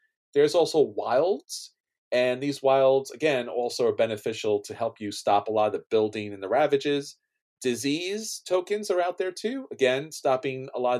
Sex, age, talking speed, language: male, 40-59, 180 wpm, English